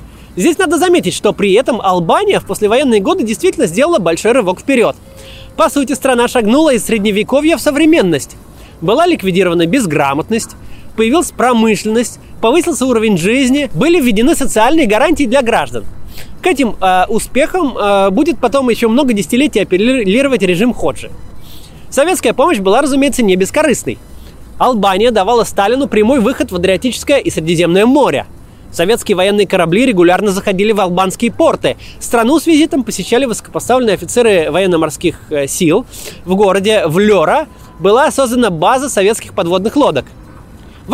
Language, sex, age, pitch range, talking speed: Russian, male, 20-39, 190-280 Hz, 135 wpm